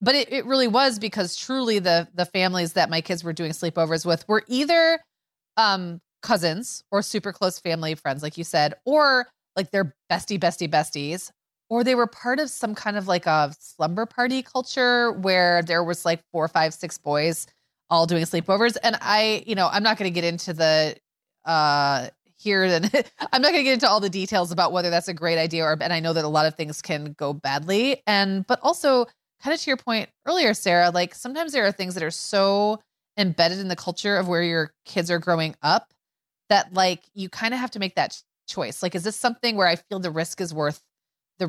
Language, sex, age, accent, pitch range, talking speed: English, female, 20-39, American, 165-215 Hz, 220 wpm